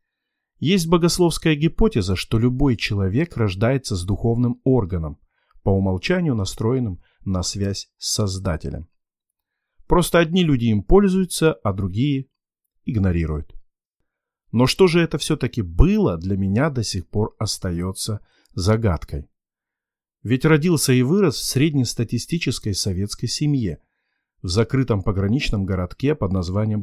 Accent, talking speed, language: native, 115 wpm, Russian